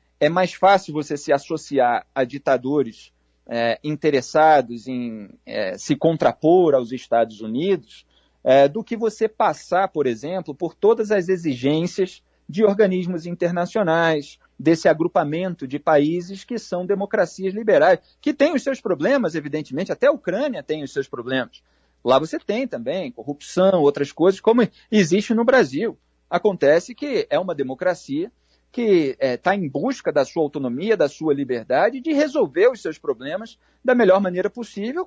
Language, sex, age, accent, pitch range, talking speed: Portuguese, male, 40-59, Brazilian, 145-220 Hz, 145 wpm